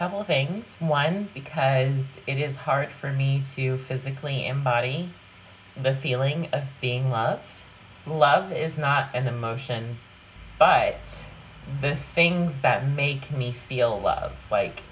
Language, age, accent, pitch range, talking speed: English, 30-49, American, 115-145 Hz, 125 wpm